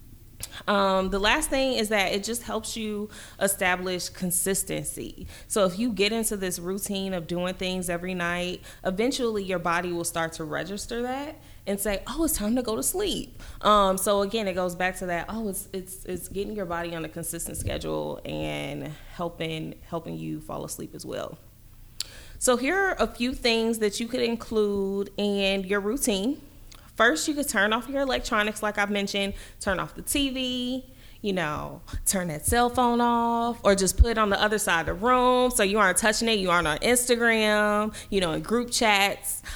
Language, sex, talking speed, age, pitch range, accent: English, female, 195 wpm, 20-39, 180-225 Hz, American